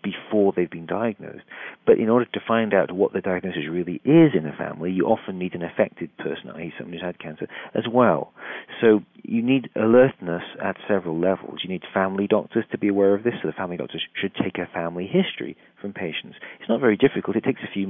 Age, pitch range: 40-59, 90-115 Hz